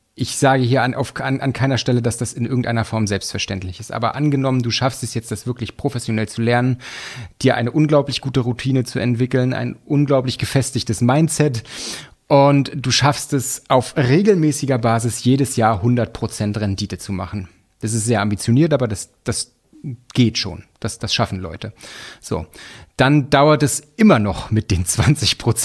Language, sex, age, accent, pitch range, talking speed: German, male, 30-49, German, 110-135 Hz, 170 wpm